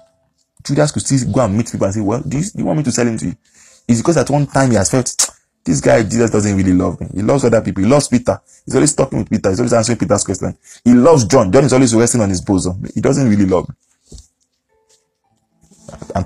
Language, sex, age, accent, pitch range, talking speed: English, male, 20-39, Nigerian, 95-125 Hz, 255 wpm